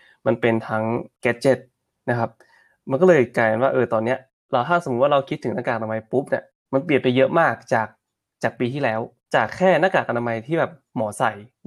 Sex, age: male, 20-39